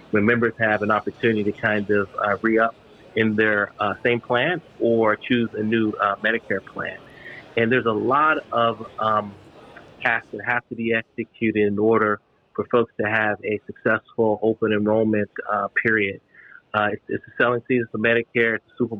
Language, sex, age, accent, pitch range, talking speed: English, male, 30-49, American, 110-115 Hz, 175 wpm